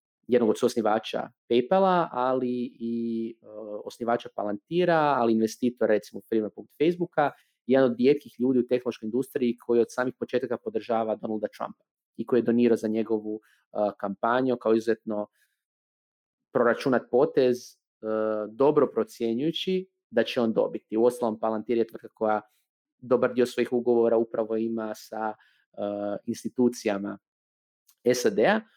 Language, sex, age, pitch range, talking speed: Croatian, male, 30-49, 110-135 Hz, 130 wpm